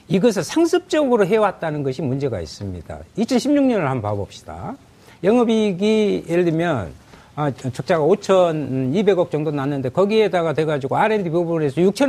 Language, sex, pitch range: Korean, male, 130-210 Hz